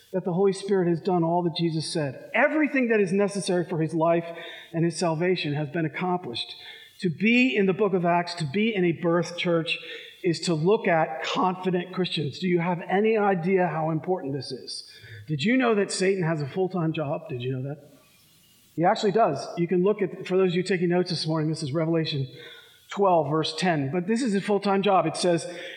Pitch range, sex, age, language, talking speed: 175-255 Hz, male, 40-59, English, 215 wpm